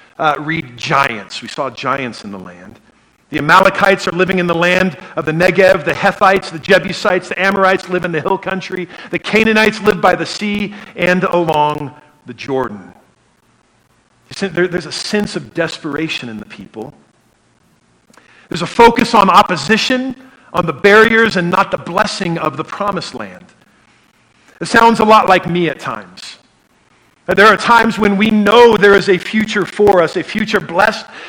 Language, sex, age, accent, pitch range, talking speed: English, male, 50-69, American, 155-200 Hz, 165 wpm